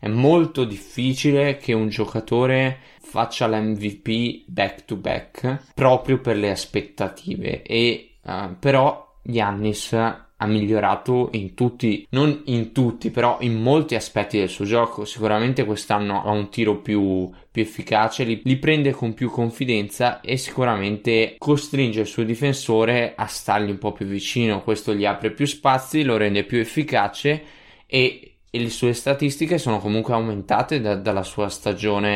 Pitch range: 105-125 Hz